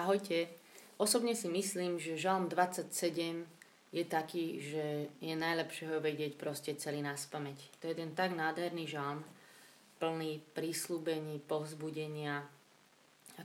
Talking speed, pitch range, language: 130 wpm, 155-185 Hz, Slovak